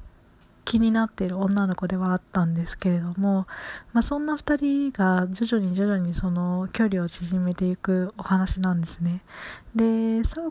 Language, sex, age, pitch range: Japanese, female, 20-39, 180-220 Hz